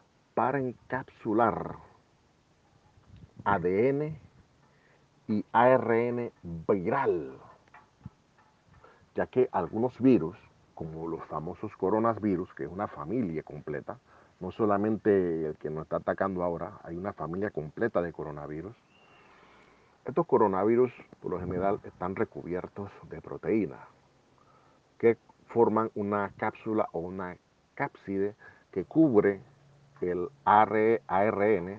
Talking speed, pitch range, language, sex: 100 wpm, 90-115 Hz, Spanish, male